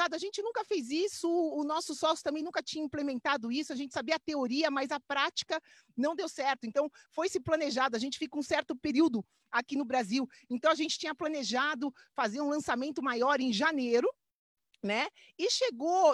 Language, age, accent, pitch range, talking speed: Portuguese, 40-59, Brazilian, 250-315 Hz, 185 wpm